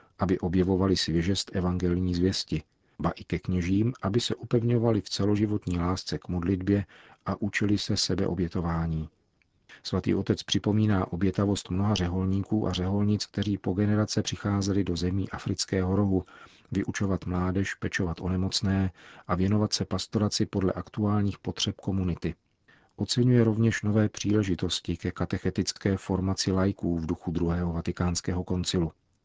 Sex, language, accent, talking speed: male, Czech, native, 130 wpm